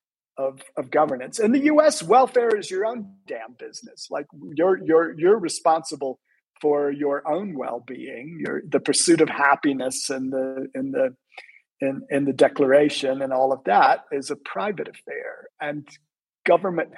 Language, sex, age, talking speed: English, male, 50-69, 155 wpm